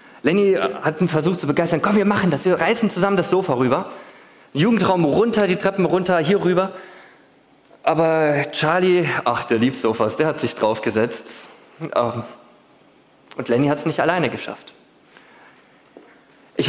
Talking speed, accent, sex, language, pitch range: 145 wpm, German, male, German, 150-195 Hz